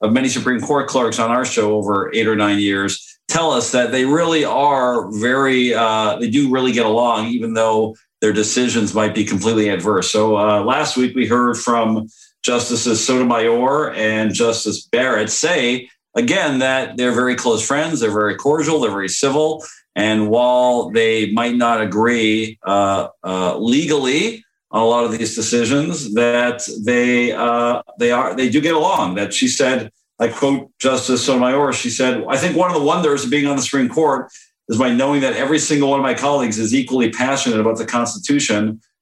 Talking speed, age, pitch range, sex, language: 185 wpm, 50-69, 110-140 Hz, male, English